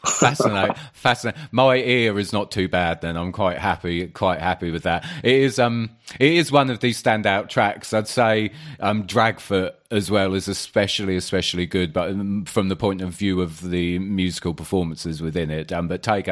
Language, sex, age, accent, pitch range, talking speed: English, male, 30-49, British, 90-115 Hz, 190 wpm